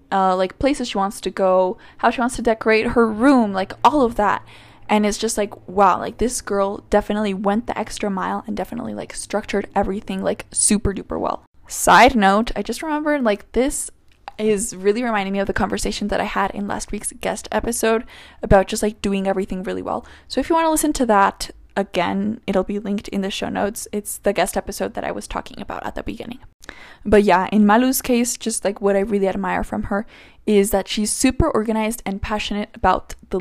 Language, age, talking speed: English, 10-29, 215 wpm